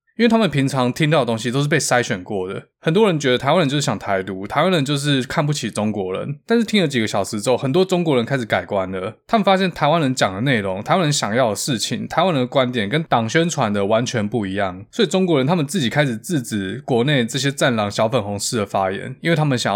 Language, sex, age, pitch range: Chinese, male, 20-39, 105-145 Hz